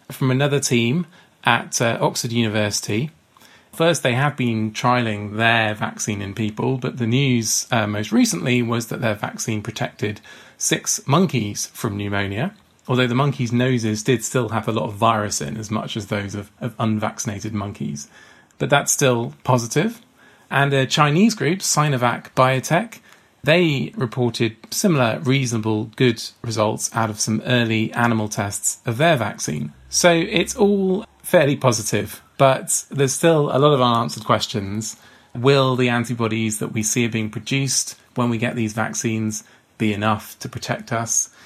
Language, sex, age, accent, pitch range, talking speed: English, male, 30-49, British, 110-130 Hz, 155 wpm